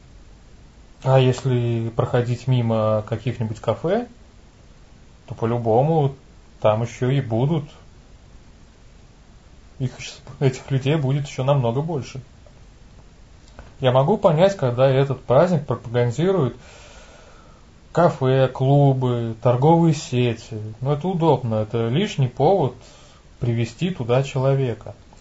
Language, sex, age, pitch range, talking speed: Russian, male, 20-39, 115-145 Hz, 95 wpm